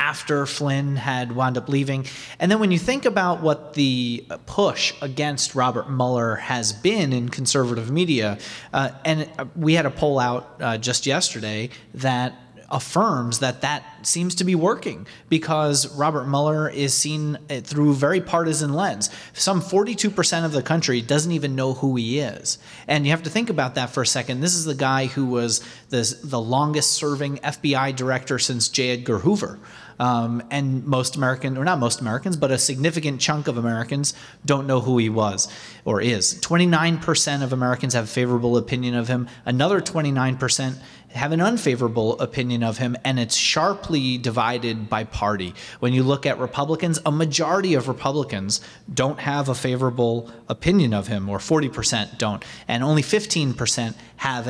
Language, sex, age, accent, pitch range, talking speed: English, male, 30-49, American, 120-150 Hz, 170 wpm